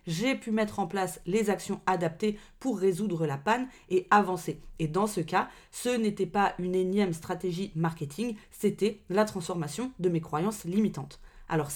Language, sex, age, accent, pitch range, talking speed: French, female, 30-49, French, 175-220 Hz, 170 wpm